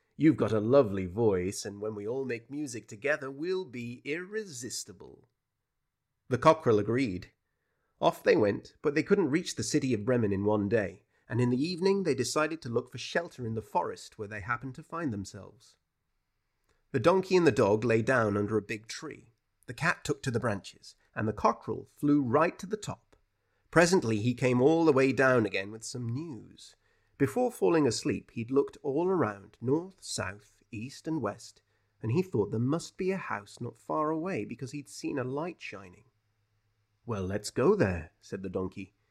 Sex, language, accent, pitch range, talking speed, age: male, English, British, 105-135 Hz, 190 wpm, 30-49